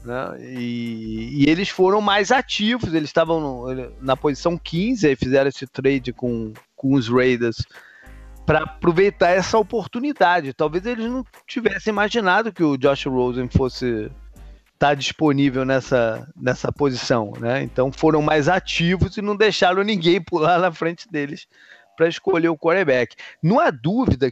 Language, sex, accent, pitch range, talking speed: Portuguese, male, Brazilian, 130-195 Hz, 145 wpm